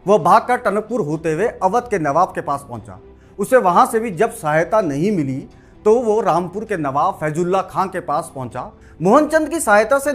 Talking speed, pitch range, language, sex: 195 wpm, 155-225 Hz, Hindi, male